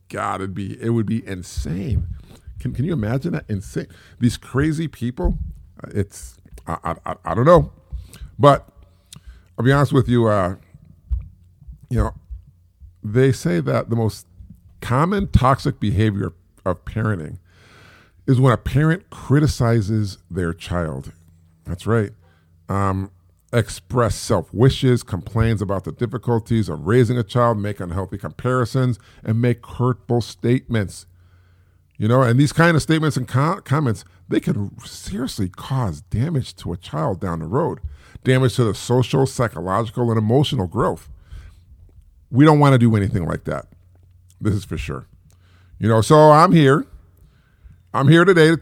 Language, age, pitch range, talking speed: English, 50-69, 90-125 Hz, 145 wpm